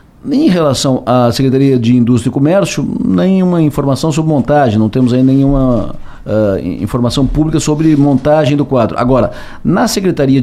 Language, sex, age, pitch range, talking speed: Portuguese, male, 50-69, 125-175 Hz, 145 wpm